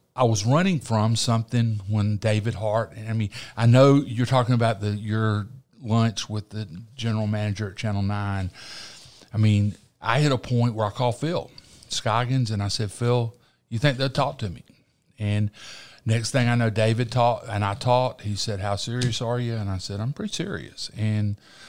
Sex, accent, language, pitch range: male, American, English, 100-125 Hz